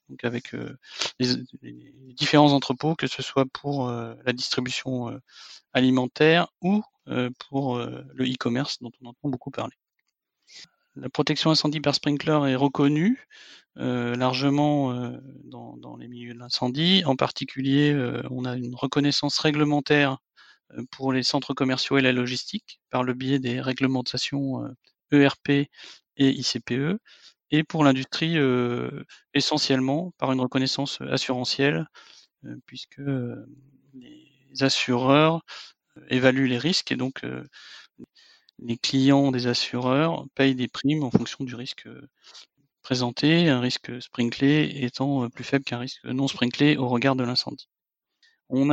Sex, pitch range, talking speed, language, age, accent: male, 125-145 Hz, 135 wpm, French, 40-59, French